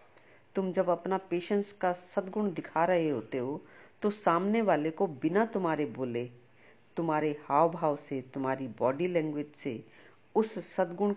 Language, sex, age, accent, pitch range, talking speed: Hindi, female, 50-69, native, 145-185 Hz, 145 wpm